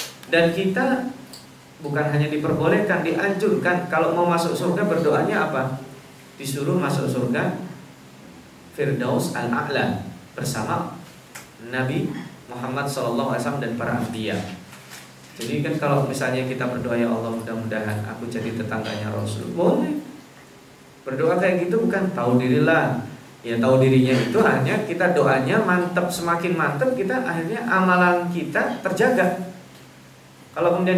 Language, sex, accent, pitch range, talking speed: Indonesian, male, native, 130-180 Hz, 115 wpm